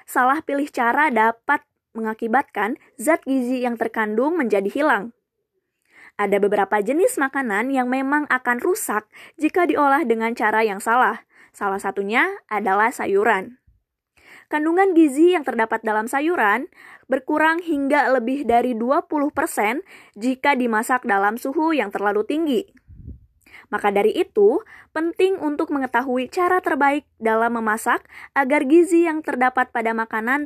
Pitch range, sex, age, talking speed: 225-310 Hz, female, 20-39, 125 wpm